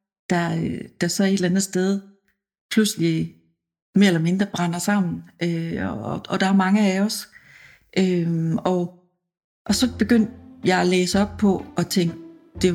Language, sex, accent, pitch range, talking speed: English, female, Danish, 170-205 Hz, 165 wpm